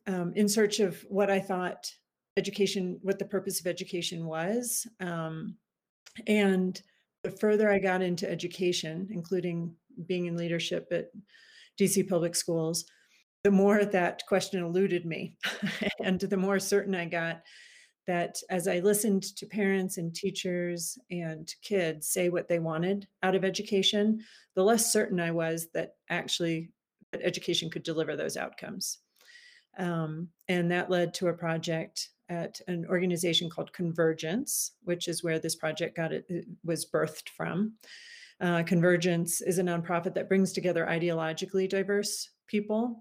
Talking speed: 145 wpm